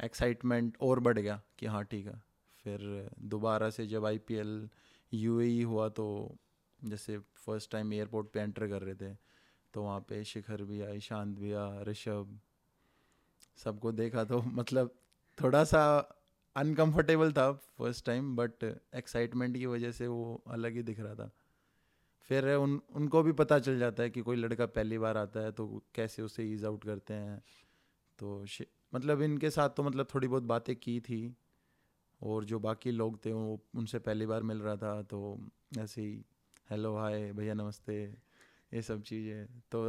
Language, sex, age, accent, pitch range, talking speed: English, male, 20-39, Indian, 105-125 Hz, 120 wpm